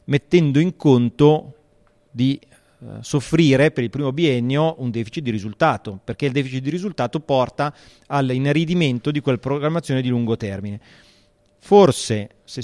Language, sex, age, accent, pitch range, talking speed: Italian, male, 30-49, native, 125-155 Hz, 140 wpm